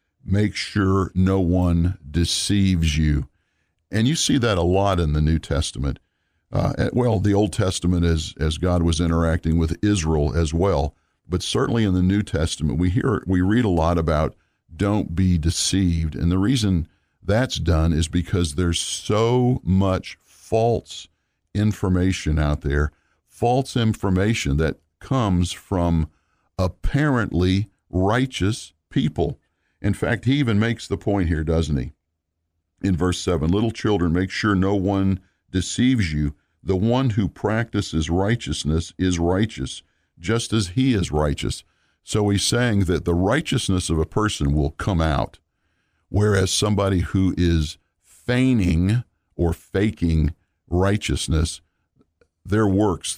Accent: American